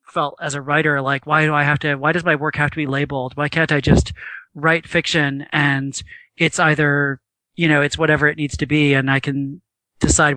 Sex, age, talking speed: male, 30-49, 225 wpm